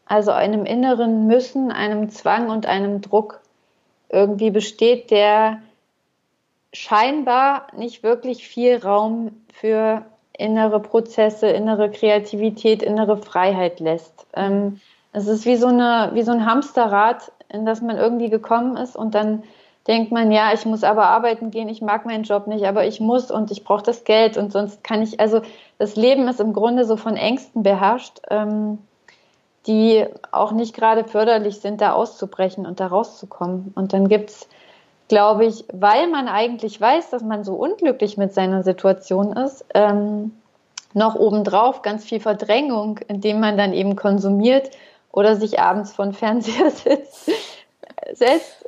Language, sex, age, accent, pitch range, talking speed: German, female, 20-39, German, 210-235 Hz, 155 wpm